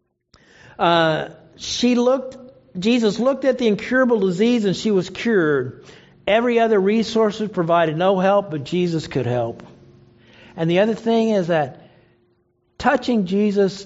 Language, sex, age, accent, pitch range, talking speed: English, male, 50-69, American, 165-230 Hz, 135 wpm